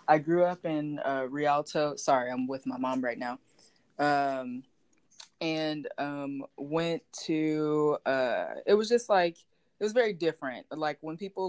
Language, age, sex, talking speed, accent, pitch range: English, 20-39, female, 155 wpm, American, 140-160 Hz